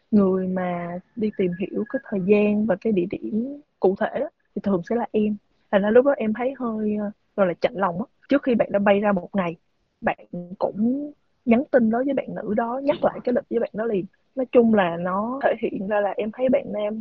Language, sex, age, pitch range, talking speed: Vietnamese, female, 20-39, 200-245 Hz, 245 wpm